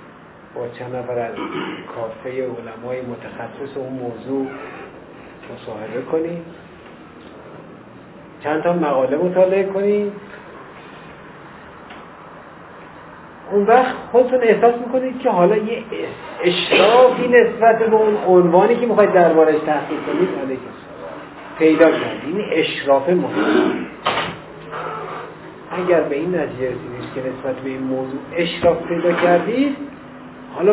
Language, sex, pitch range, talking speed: Persian, male, 140-190 Hz, 100 wpm